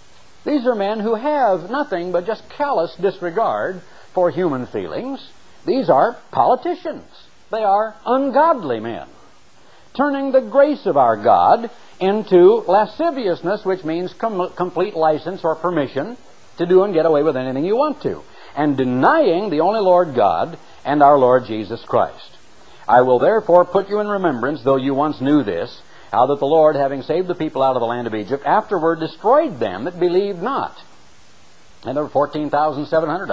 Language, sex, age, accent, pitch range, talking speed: English, male, 60-79, American, 125-195 Hz, 165 wpm